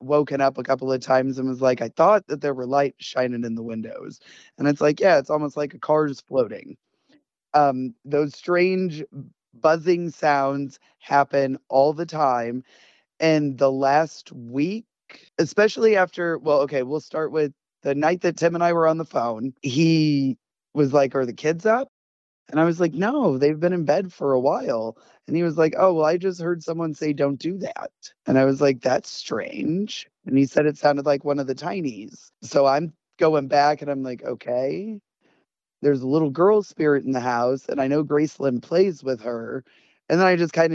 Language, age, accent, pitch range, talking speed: English, 20-39, American, 135-160 Hz, 200 wpm